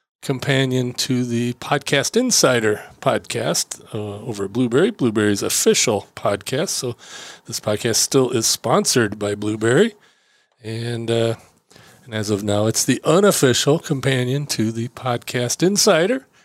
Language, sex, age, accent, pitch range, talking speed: English, male, 40-59, American, 120-170 Hz, 130 wpm